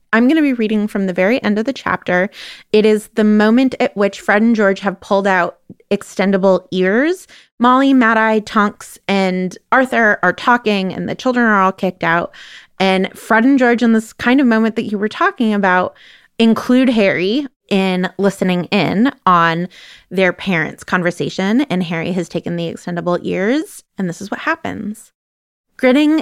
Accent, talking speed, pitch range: American, 175 wpm, 185-230 Hz